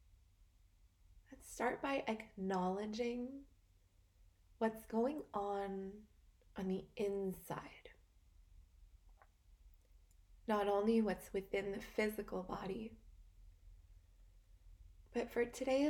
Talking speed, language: 70 wpm, English